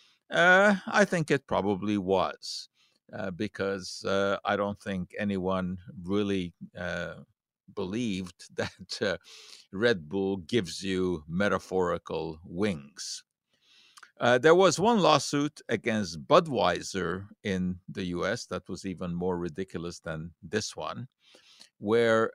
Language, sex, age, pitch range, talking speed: English, male, 60-79, 95-125 Hz, 115 wpm